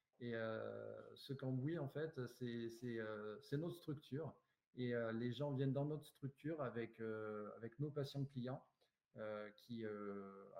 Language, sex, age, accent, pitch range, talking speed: French, male, 40-59, French, 120-145 Hz, 165 wpm